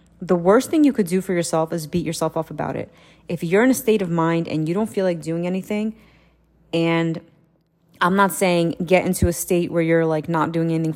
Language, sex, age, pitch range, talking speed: English, female, 30-49, 165-185 Hz, 230 wpm